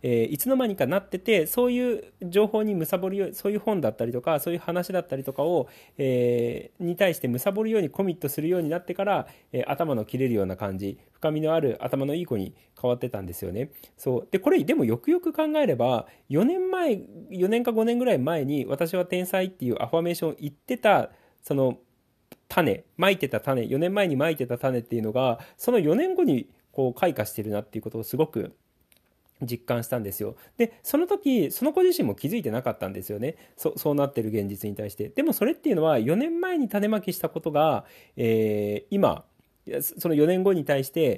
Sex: male